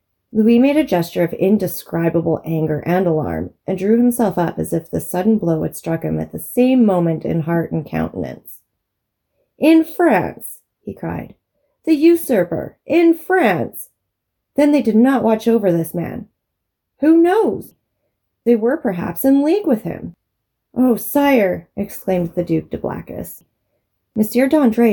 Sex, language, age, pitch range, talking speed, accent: female, English, 30-49, 165-235 Hz, 150 wpm, American